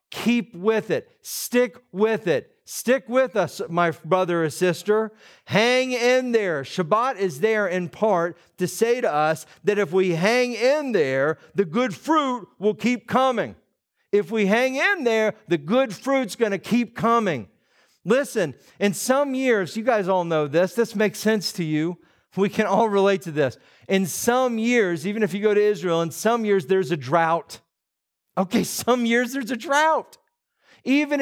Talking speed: 175 wpm